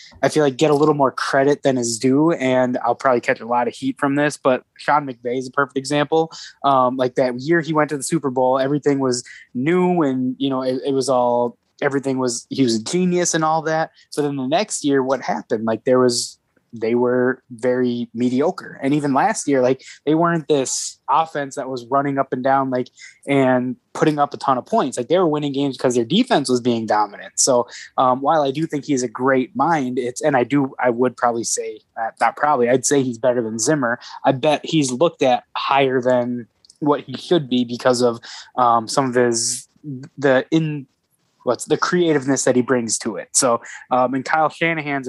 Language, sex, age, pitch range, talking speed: English, male, 20-39, 125-150 Hz, 220 wpm